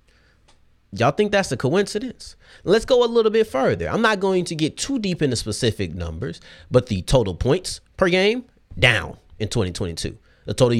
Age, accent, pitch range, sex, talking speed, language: 30-49, American, 110-185 Hz, male, 180 wpm, English